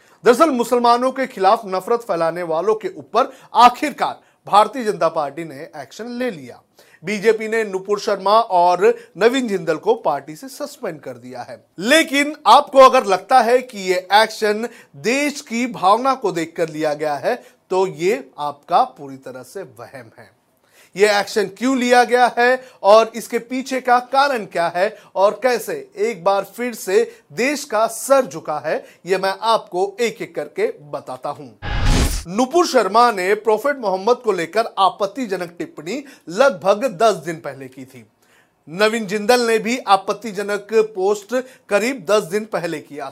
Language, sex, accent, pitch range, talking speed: Hindi, male, native, 180-250 Hz, 155 wpm